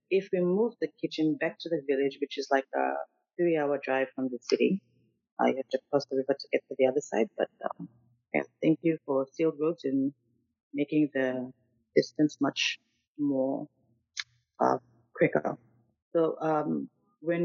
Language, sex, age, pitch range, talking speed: English, female, 30-49, 130-155 Hz, 165 wpm